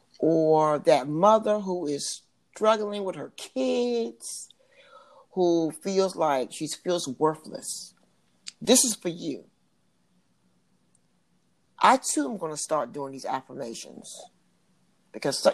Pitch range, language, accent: 155-215 Hz, English, American